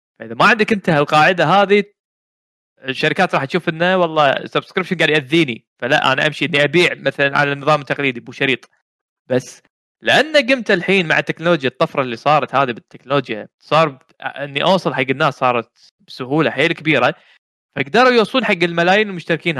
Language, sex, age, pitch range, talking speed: Arabic, male, 20-39, 145-195 Hz, 155 wpm